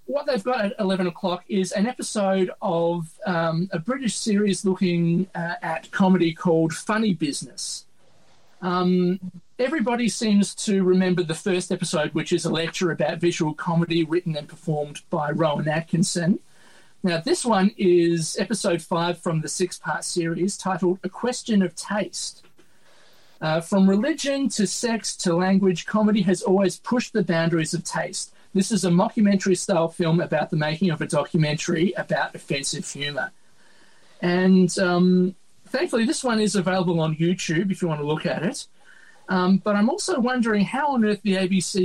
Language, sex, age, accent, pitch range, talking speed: English, male, 40-59, Australian, 170-200 Hz, 160 wpm